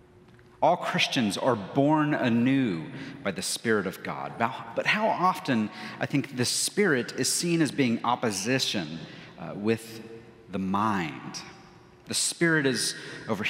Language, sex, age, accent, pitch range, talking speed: English, male, 40-59, American, 115-150 Hz, 135 wpm